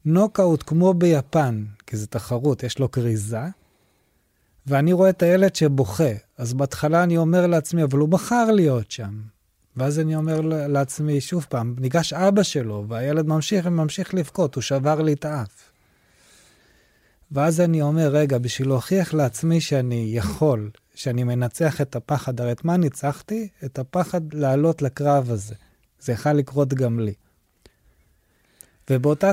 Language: Hebrew